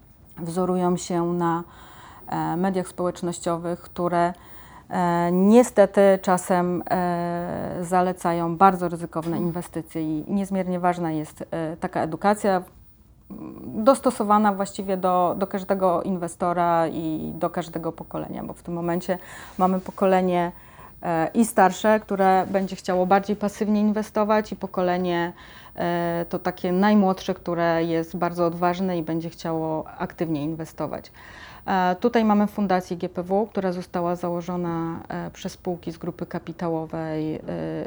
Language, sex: Polish, female